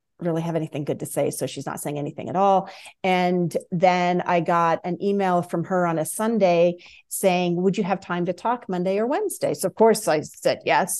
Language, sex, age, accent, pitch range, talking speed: English, female, 40-59, American, 165-200 Hz, 220 wpm